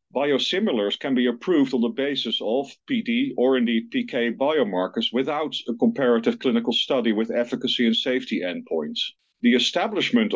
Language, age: English, 50-69